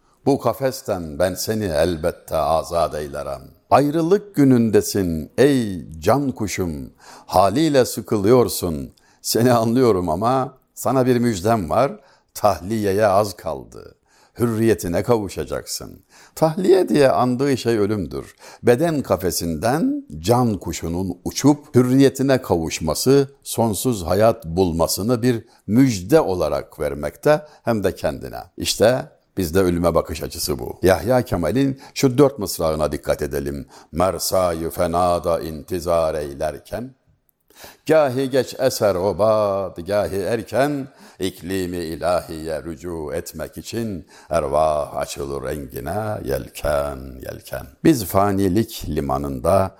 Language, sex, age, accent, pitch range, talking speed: Turkish, male, 60-79, native, 90-130 Hz, 105 wpm